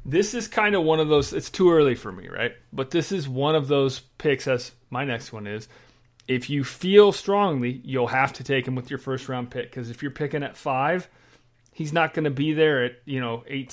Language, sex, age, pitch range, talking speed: English, male, 40-59, 120-140 Hz, 235 wpm